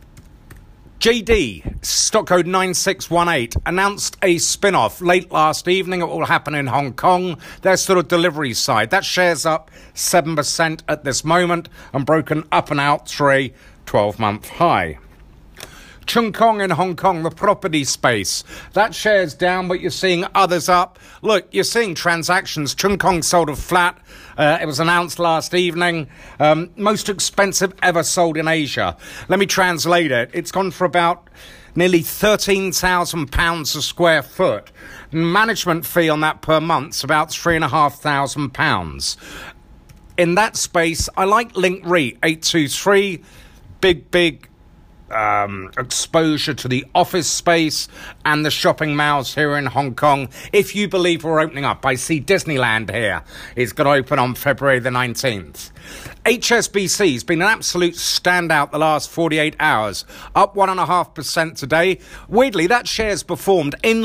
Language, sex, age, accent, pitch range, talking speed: English, male, 50-69, British, 145-180 Hz, 150 wpm